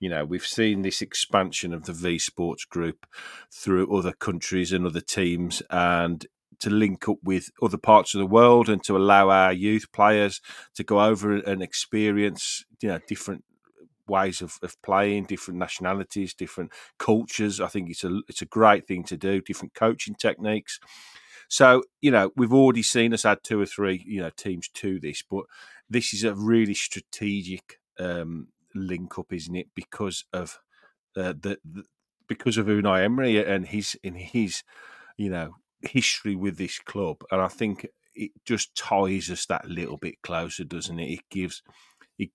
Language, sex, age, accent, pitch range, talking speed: English, male, 40-59, British, 90-105 Hz, 175 wpm